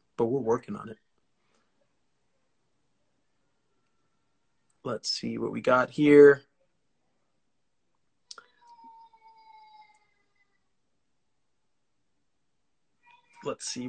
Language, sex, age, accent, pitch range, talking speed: English, male, 30-49, American, 130-170 Hz, 55 wpm